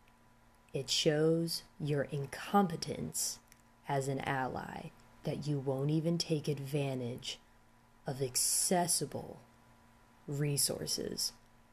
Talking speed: 80 wpm